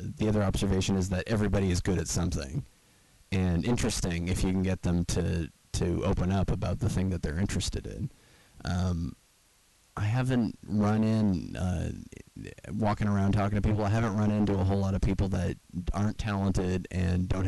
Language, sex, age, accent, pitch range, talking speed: English, male, 30-49, American, 90-100 Hz, 180 wpm